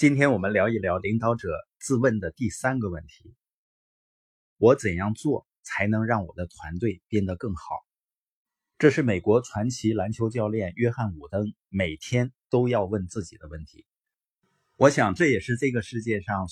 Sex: male